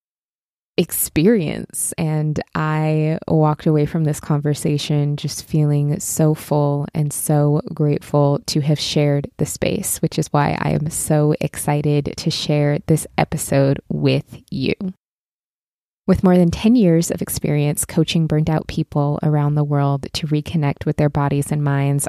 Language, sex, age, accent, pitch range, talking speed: English, female, 20-39, American, 150-185 Hz, 145 wpm